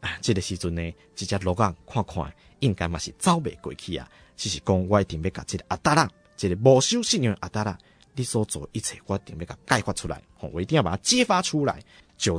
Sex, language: male, Chinese